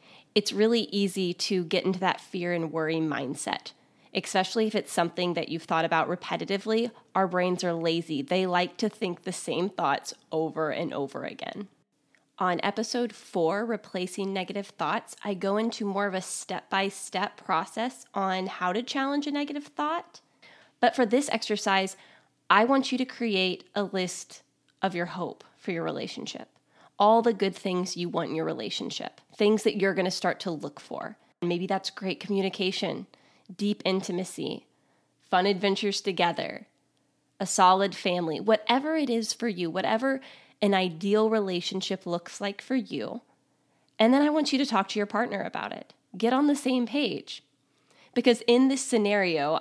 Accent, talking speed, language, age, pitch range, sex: American, 165 wpm, English, 20-39, 175-220 Hz, female